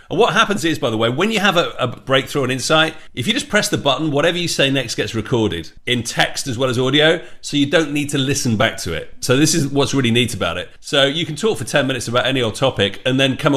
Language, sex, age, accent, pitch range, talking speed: English, male, 40-59, British, 115-150 Hz, 290 wpm